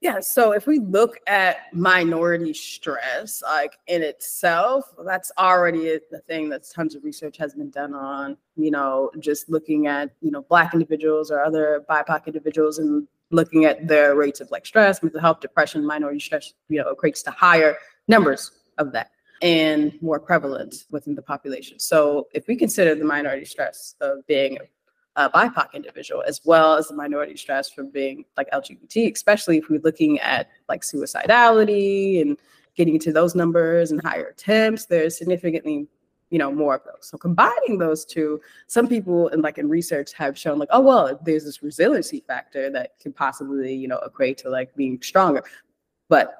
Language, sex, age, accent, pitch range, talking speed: English, female, 20-39, American, 150-185 Hz, 180 wpm